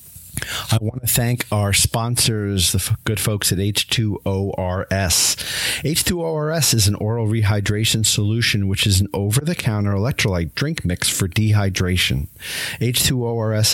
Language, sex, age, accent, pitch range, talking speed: English, male, 40-59, American, 100-125 Hz, 120 wpm